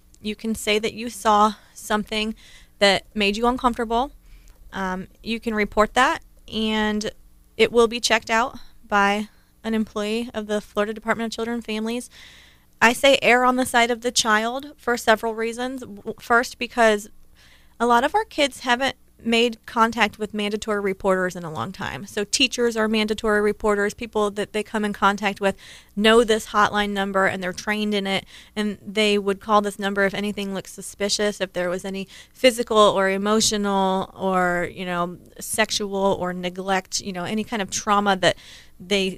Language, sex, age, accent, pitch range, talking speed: English, female, 30-49, American, 195-230 Hz, 175 wpm